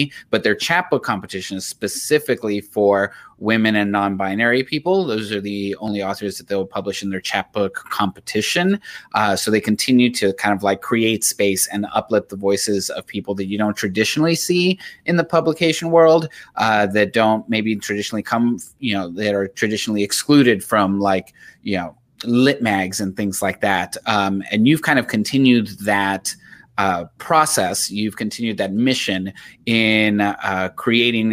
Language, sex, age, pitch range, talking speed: English, male, 30-49, 100-125 Hz, 170 wpm